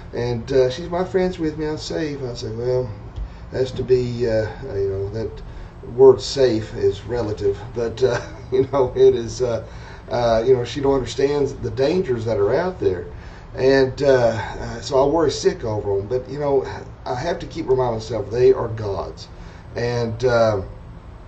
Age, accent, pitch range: 40-59, American, 110-135 Hz